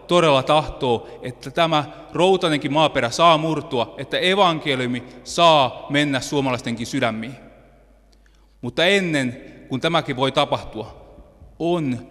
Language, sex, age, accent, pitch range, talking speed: Finnish, male, 30-49, native, 120-170 Hz, 105 wpm